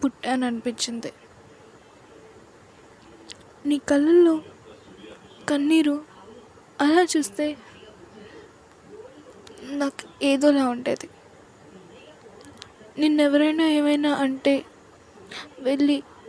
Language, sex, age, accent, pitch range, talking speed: Telugu, female, 20-39, native, 265-320 Hz, 50 wpm